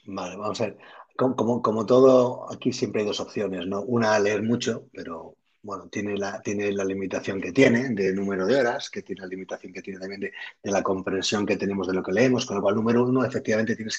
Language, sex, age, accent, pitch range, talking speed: Spanish, male, 30-49, Spanish, 110-140 Hz, 230 wpm